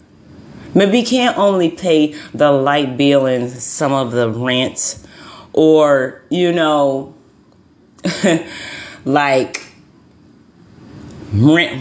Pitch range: 135-165 Hz